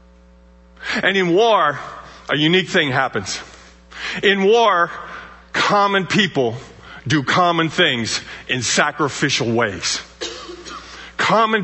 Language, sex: English, male